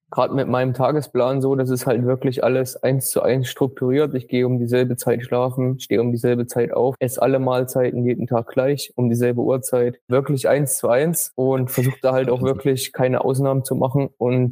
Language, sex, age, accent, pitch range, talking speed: German, male, 20-39, German, 125-140 Hz, 205 wpm